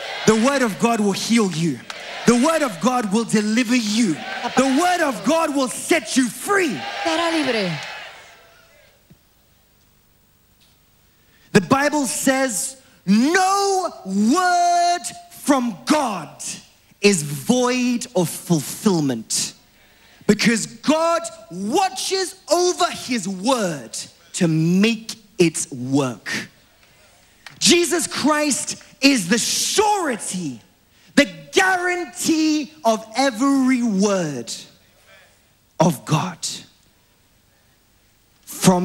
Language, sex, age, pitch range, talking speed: English, male, 30-49, 175-270 Hz, 85 wpm